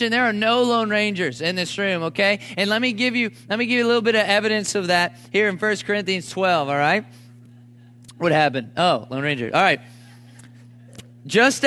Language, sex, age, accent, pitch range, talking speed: English, male, 30-49, American, 180-230 Hz, 205 wpm